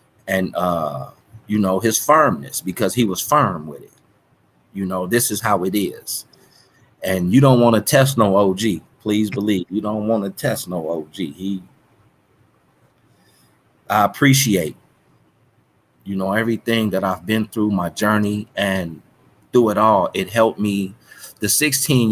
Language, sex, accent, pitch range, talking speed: English, male, American, 95-110 Hz, 155 wpm